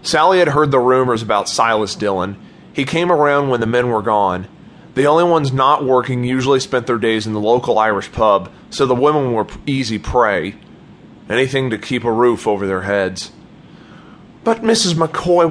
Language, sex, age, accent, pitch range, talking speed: English, male, 30-49, American, 100-145 Hz, 180 wpm